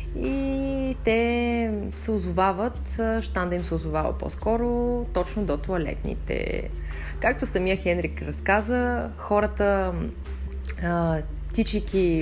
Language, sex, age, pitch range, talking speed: Bulgarian, female, 20-39, 160-220 Hz, 90 wpm